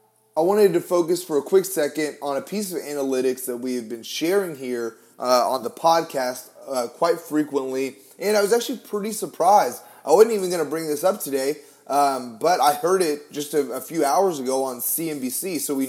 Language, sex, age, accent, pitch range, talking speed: English, male, 30-49, American, 130-165 Hz, 210 wpm